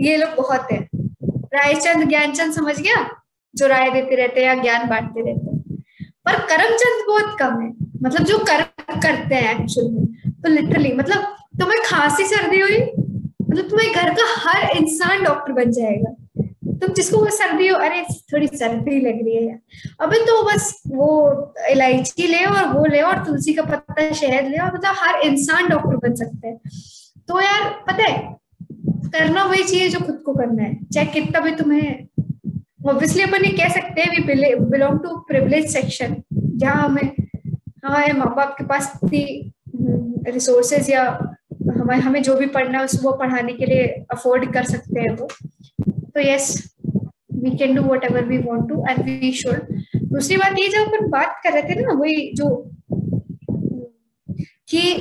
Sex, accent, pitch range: female, native, 250-345 Hz